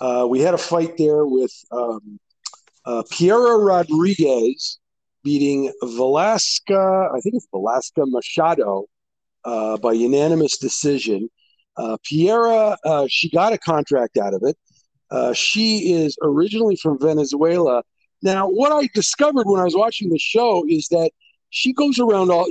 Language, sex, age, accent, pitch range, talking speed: English, male, 50-69, American, 140-210 Hz, 145 wpm